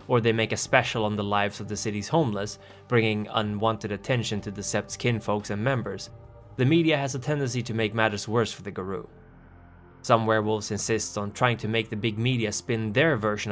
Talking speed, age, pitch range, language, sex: 205 wpm, 20-39, 105-120 Hz, English, male